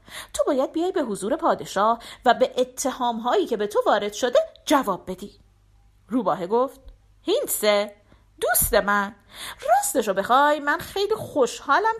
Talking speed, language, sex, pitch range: 140 wpm, Persian, female, 205-335 Hz